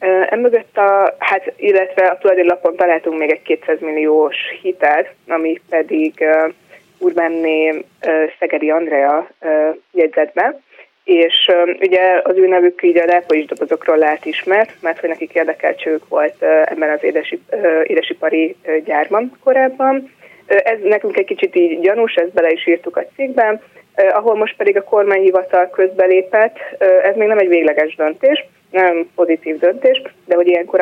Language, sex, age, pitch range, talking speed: Hungarian, female, 20-39, 160-205 Hz, 160 wpm